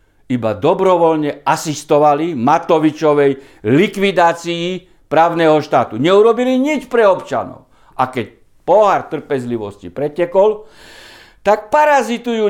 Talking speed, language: 85 wpm, Slovak